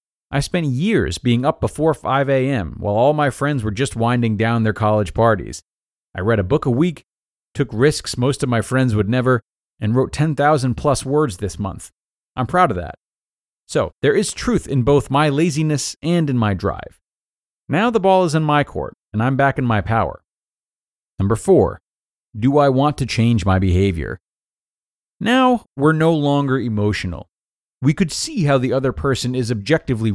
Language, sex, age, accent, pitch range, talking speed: English, male, 30-49, American, 105-145 Hz, 185 wpm